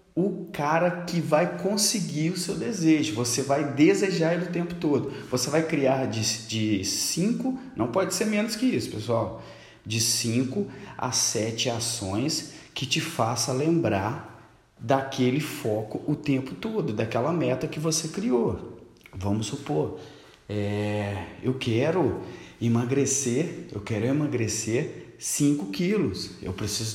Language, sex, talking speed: Portuguese, male, 130 wpm